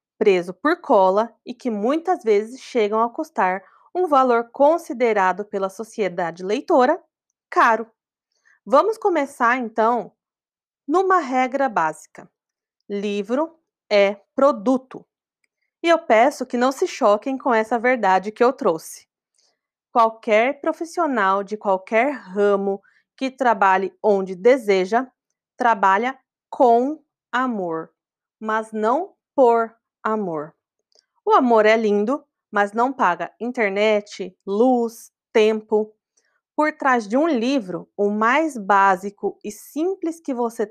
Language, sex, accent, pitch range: Portuguese, female, Brazilian, 205-265 Hz